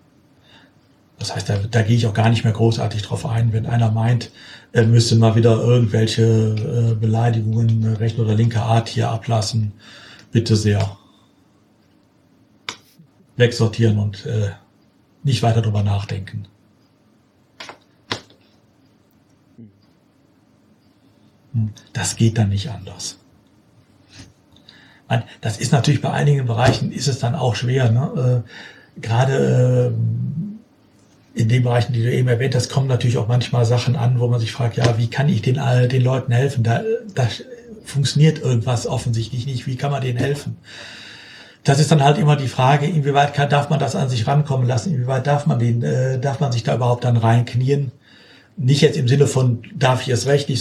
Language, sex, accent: German, male, German